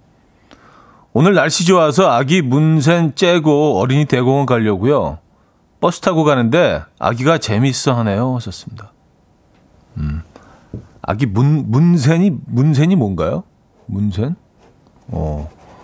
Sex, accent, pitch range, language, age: male, native, 100-150 Hz, Korean, 40-59